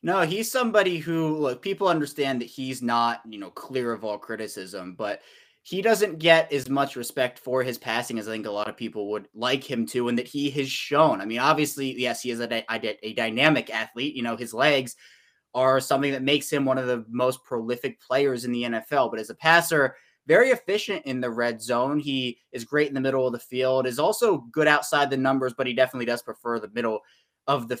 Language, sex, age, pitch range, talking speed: English, male, 20-39, 120-145 Hz, 225 wpm